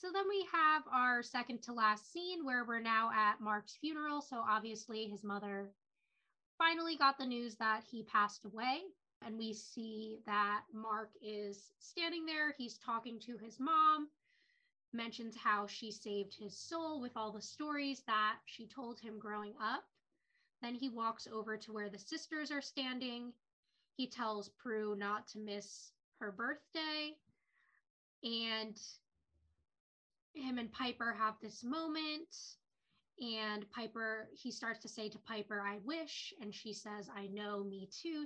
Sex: female